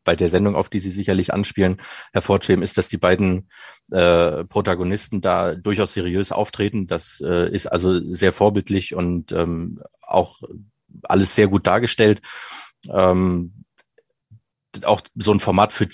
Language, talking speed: English, 145 wpm